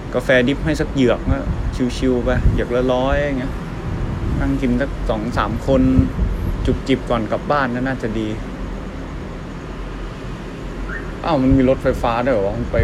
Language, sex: Thai, male